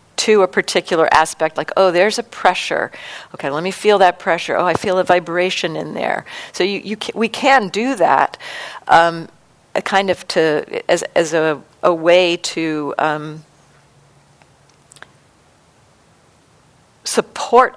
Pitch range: 155-190 Hz